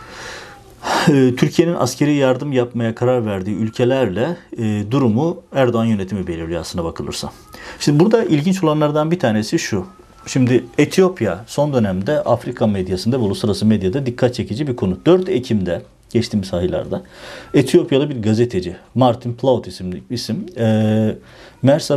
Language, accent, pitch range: Turkish, native, 105-130 Hz